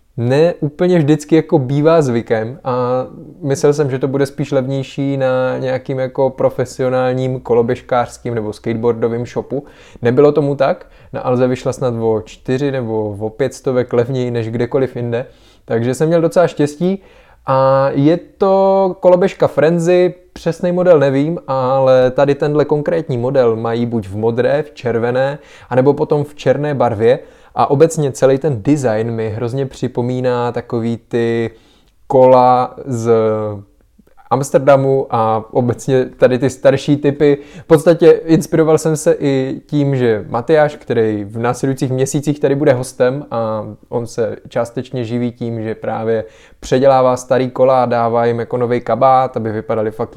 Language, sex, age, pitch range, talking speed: Czech, male, 20-39, 120-145 Hz, 145 wpm